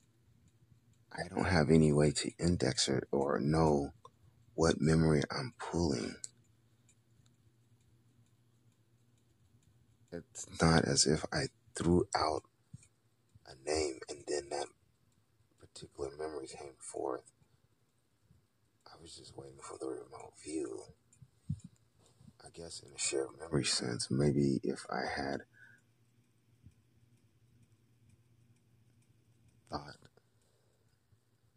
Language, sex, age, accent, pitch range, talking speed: English, male, 40-59, American, 85-120 Hz, 95 wpm